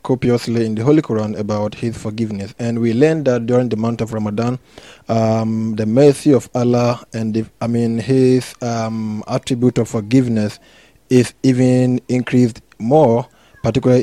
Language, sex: English, male